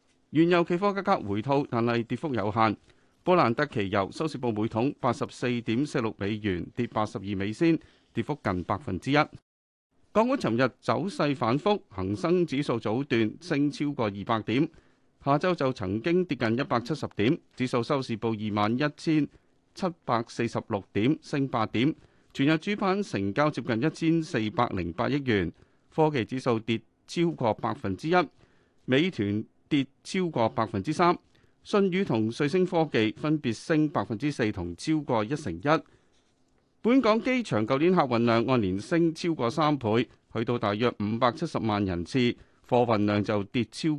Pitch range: 110-155 Hz